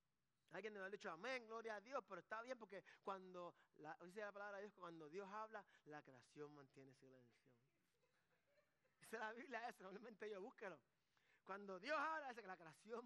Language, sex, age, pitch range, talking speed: Spanish, male, 30-49, 195-270 Hz, 200 wpm